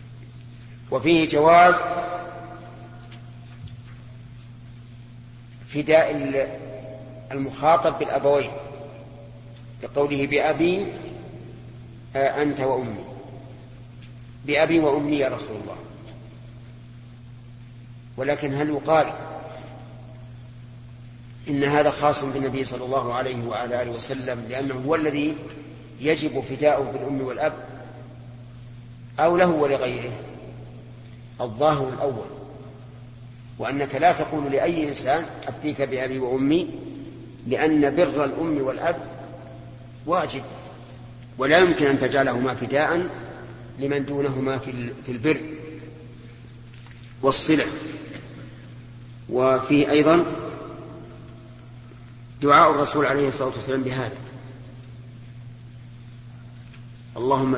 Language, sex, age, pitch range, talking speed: Arabic, male, 40-59, 120-145 Hz, 75 wpm